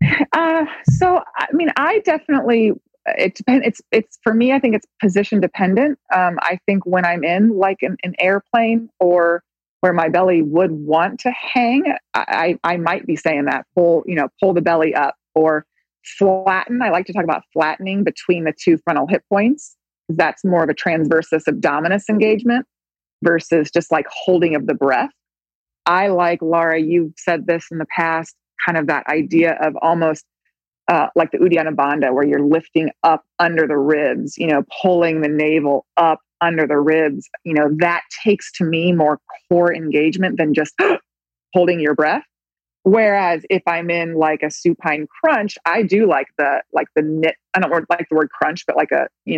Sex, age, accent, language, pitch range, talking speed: female, 30-49, American, English, 155-195 Hz, 185 wpm